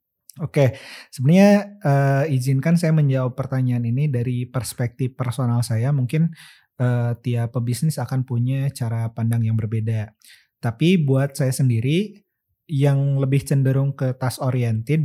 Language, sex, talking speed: Indonesian, male, 130 wpm